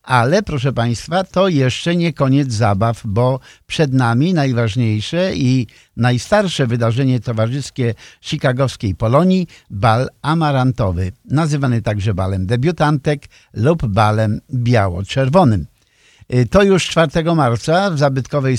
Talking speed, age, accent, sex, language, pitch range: 105 wpm, 50-69, native, male, Polish, 115-150 Hz